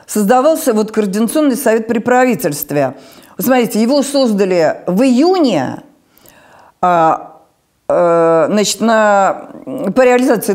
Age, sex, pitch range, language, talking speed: 50-69, female, 205-275 Hz, Russian, 100 wpm